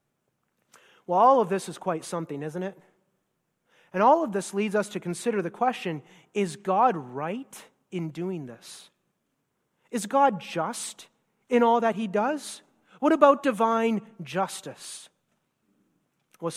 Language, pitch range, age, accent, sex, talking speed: English, 185-280 Hz, 30-49, American, male, 140 wpm